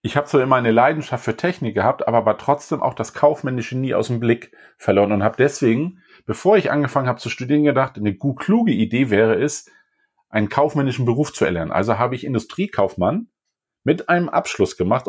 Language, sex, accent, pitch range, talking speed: German, male, German, 115-145 Hz, 200 wpm